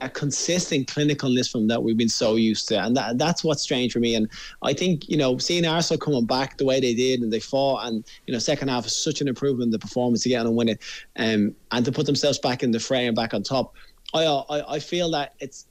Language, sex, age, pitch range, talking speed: English, male, 20-39, 125-150 Hz, 270 wpm